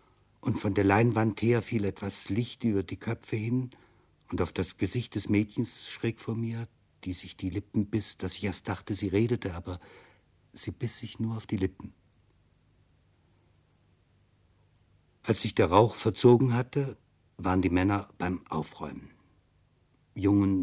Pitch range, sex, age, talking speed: 95-115 Hz, male, 60-79, 150 wpm